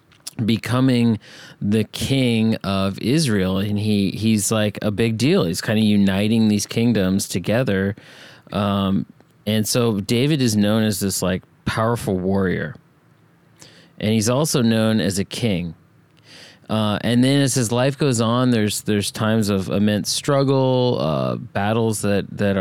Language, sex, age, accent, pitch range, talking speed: English, male, 30-49, American, 100-125 Hz, 145 wpm